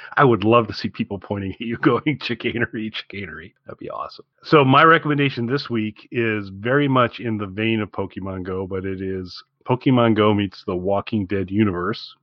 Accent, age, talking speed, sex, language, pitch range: American, 40-59, 190 wpm, male, English, 100-120 Hz